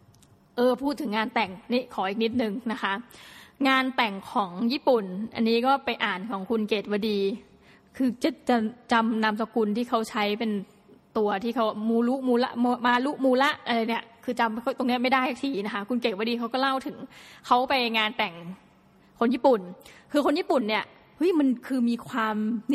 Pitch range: 215-255 Hz